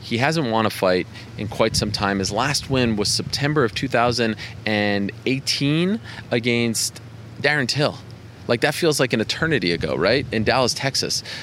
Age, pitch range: 20-39, 105-140 Hz